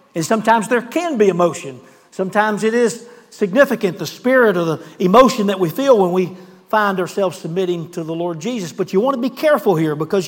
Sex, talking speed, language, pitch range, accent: male, 205 wpm, English, 185-230 Hz, American